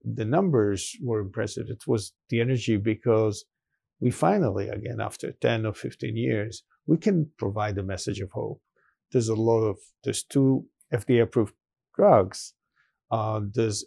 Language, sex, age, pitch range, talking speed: English, male, 50-69, 110-130 Hz, 145 wpm